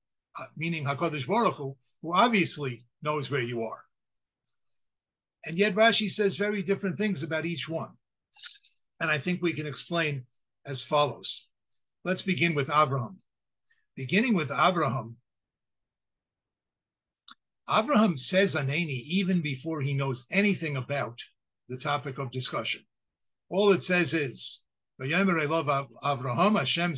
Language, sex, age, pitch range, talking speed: English, male, 60-79, 140-185 Hz, 120 wpm